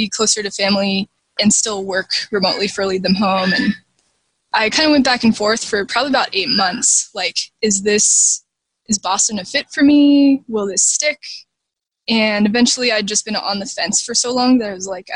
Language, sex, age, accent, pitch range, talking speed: English, female, 20-39, American, 200-235 Hz, 200 wpm